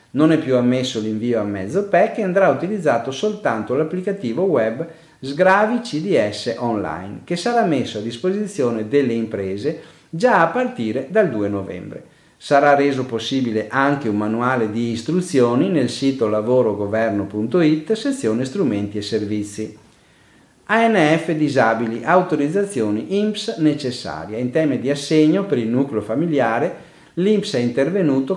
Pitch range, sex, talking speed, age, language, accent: 110-165 Hz, male, 130 wpm, 40-59, Italian, native